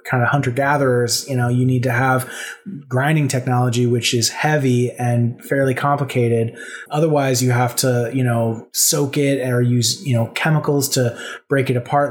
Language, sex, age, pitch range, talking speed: English, male, 20-39, 125-145 Hz, 175 wpm